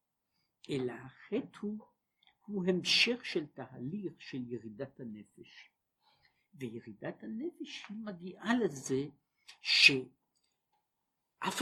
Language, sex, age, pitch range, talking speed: Hebrew, male, 60-79, 135-215 Hz, 75 wpm